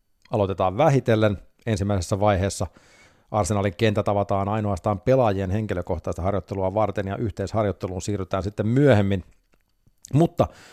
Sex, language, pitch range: male, Finnish, 100-120 Hz